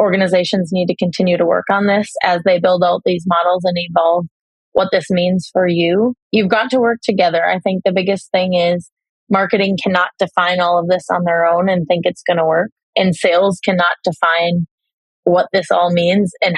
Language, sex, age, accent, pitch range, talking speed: English, female, 20-39, American, 175-200 Hz, 205 wpm